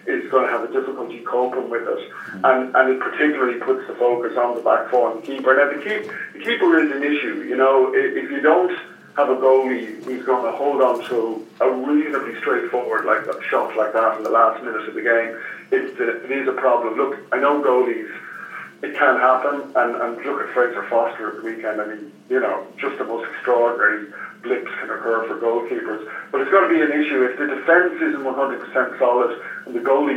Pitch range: 120-180 Hz